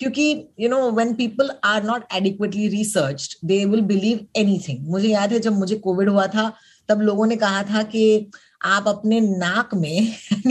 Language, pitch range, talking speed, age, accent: Hindi, 190-240 Hz, 175 wpm, 30-49, native